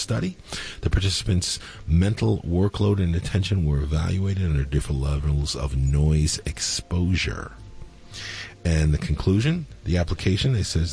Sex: male